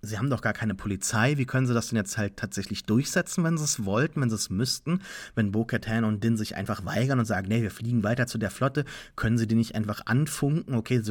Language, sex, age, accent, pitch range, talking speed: English, male, 30-49, German, 115-155 Hz, 255 wpm